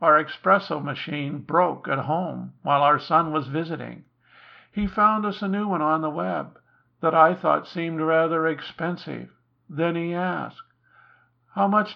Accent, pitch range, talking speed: American, 140-180 Hz, 155 wpm